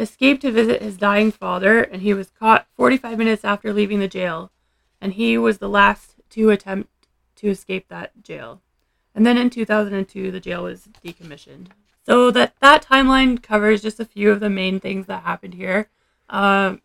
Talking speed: 180 wpm